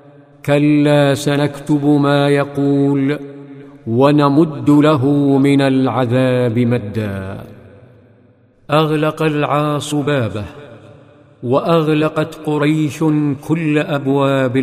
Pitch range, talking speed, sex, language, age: 125-150 Hz, 65 wpm, male, Arabic, 50-69